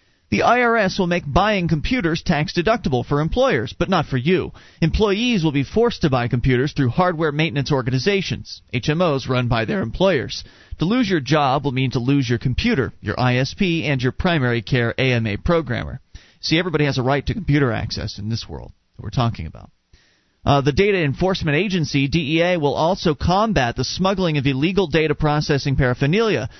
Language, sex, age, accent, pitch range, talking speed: English, male, 40-59, American, 125-165 Hz, 175 wpm